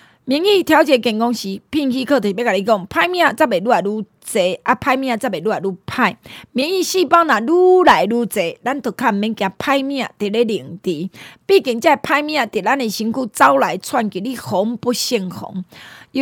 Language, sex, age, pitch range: Chinese, female, 20-39, 205-285 Hz